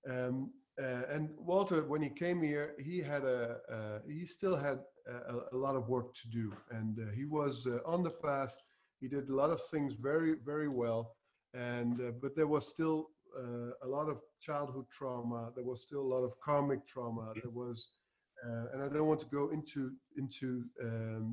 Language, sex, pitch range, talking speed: Dutch, male, 125-155 Hz, 200 wpm